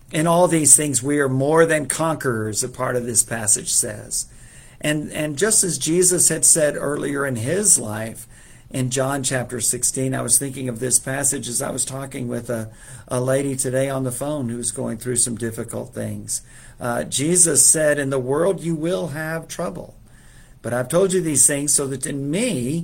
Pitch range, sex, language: 125-160 Hz, male, English